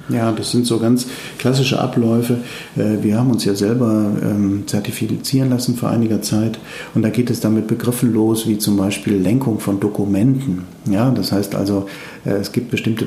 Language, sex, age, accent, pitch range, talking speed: German, male, 50-69, German, 105-125 Hz, 170 wpm